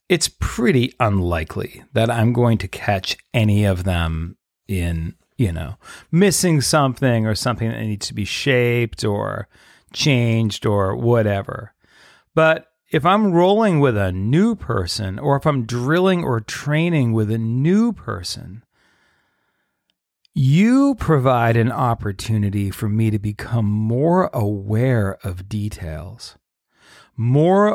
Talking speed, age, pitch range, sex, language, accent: 125 wpm, 40-59, 105-155 Hz, male, English, American